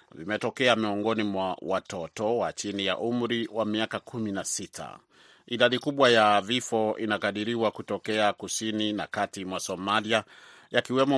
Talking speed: 125 wpm